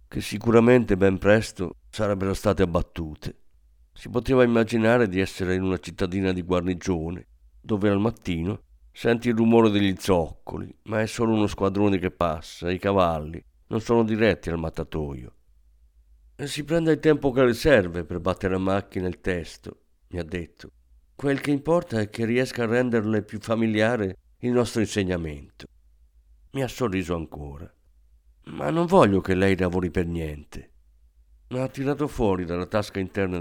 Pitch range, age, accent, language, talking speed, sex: 80-110 Hz, 50-69, native, Italian, 155 wpm, male